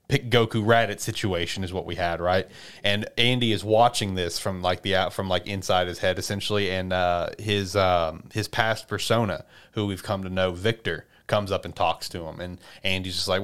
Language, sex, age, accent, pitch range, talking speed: English, male, 30-49, American, 95-120 Hz, 205 wpm